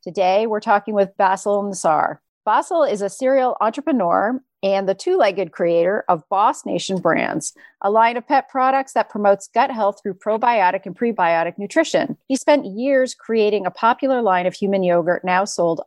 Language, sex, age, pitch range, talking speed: English, female, 40-59, 185-255 Hz, 170 wpm